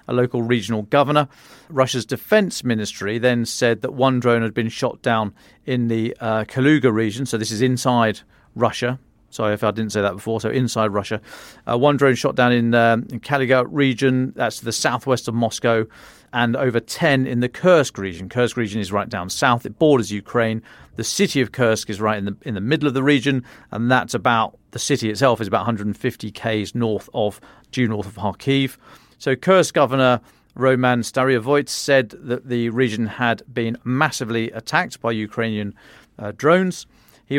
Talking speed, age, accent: 185 wpm, 40-59, British